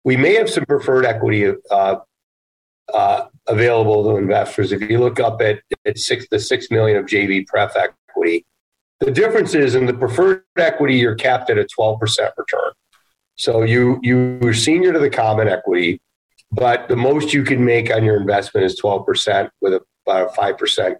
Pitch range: 110-150 Hz